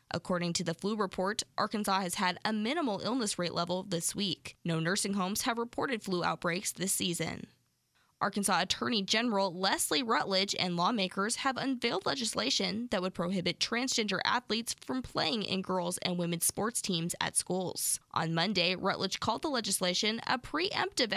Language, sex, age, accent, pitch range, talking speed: English, female, 20-39, American, 180-230 Hz, 160 wpm